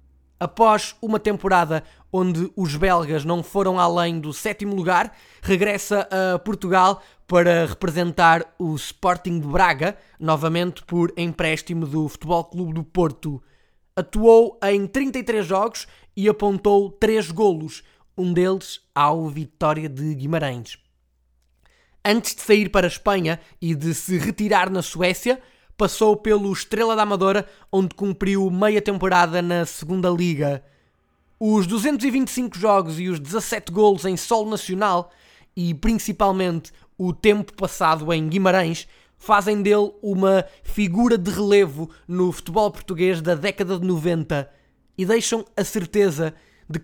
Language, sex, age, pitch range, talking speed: Portuguese, male, 20-39, 170-205 Hz, 130 wpm